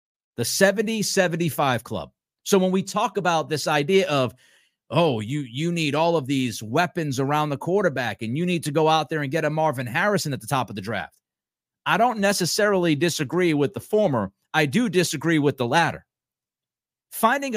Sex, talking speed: male, 185 wpm